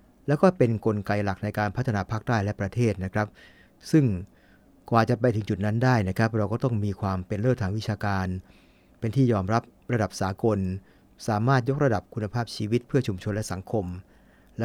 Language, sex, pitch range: English, male, 100-120 Hz